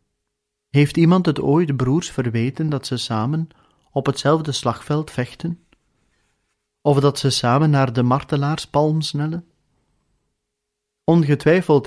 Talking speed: 110 wpm